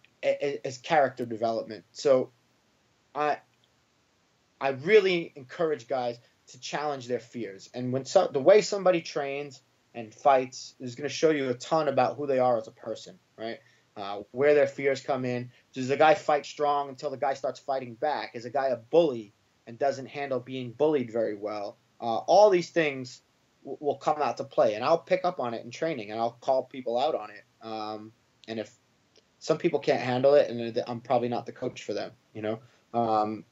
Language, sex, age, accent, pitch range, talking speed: English, male, 30-49, American, 120-145 Hz, 195 wpm